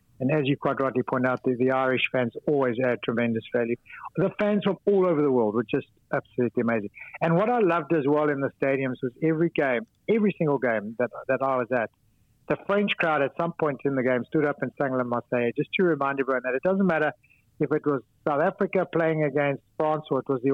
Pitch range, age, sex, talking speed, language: 125-160 Hz, 60-79, male, 235 wpm, English